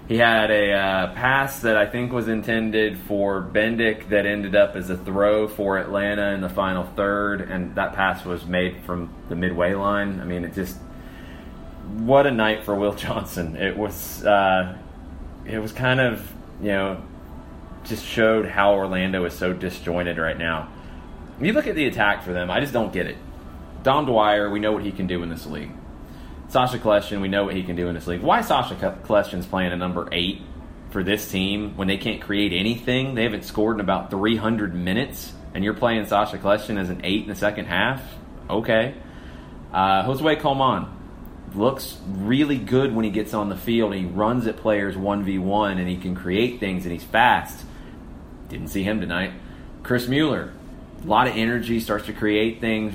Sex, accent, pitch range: male, American, 90-110 Hz